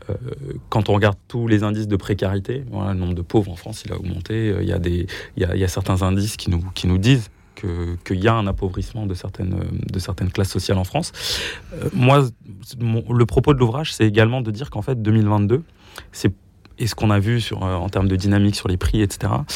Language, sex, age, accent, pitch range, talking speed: French, male, 20-39, French, 95-110 Hz, 230 wpm